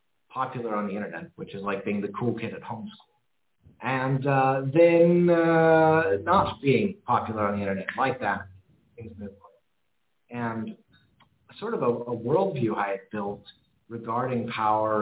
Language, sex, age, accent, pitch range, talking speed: English, male, 40-59, American, 110-145 Hz, 150 wpm